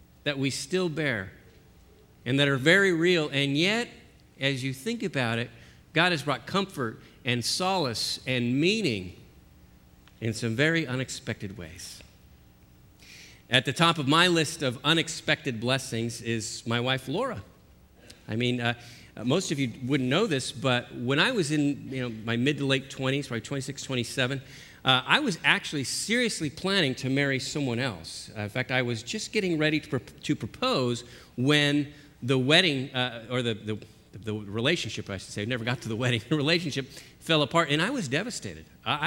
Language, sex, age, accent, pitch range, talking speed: English, male, 50-69, American, 115-145 Hz, 175 wpm